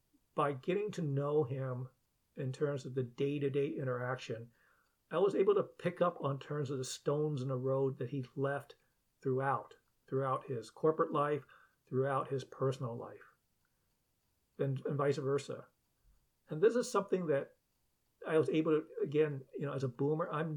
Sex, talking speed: male, 165 wpm